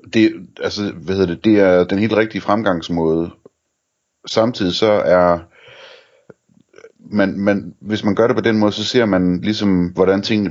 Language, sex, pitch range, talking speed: Danish, male, 85-110 Hz, 165 wpm